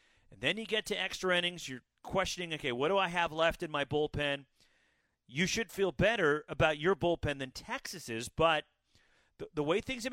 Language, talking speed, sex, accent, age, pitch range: English, 195 wpm, male, American, 40-59, 130-165 Hz